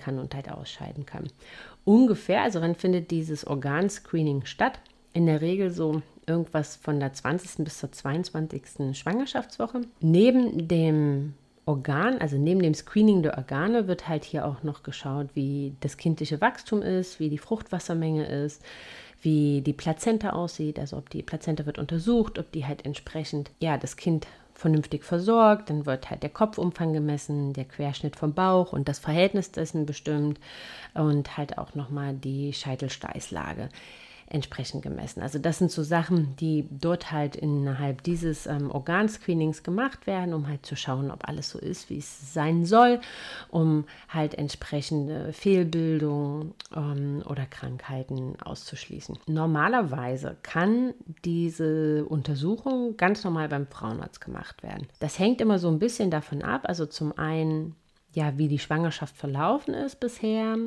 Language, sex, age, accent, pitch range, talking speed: German, female, 30-49, German, 145-175 Hz, 150 wpm